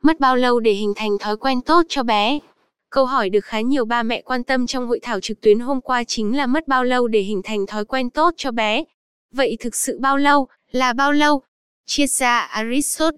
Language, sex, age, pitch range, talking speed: Vietnamese, female, 10-29, 215-270 Hz, 230 wpm